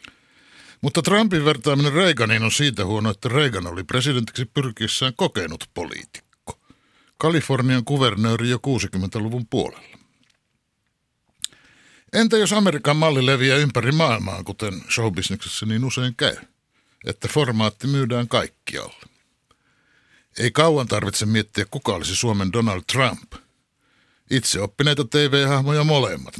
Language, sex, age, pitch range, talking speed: Finnish, male, 60-79, 110-145 Hz, 110 wpm